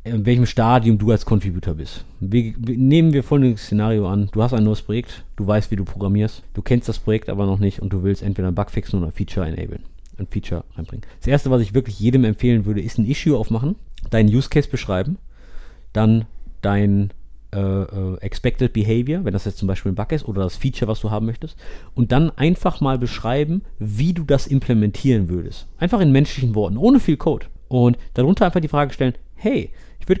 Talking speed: 210 wpm